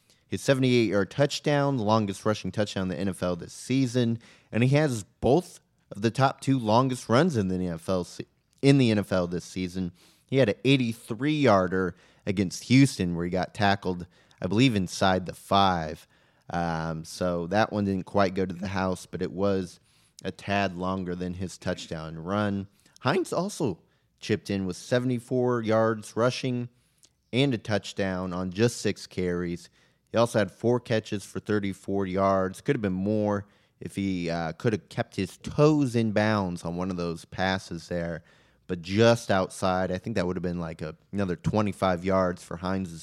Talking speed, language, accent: 170 wpm, English, American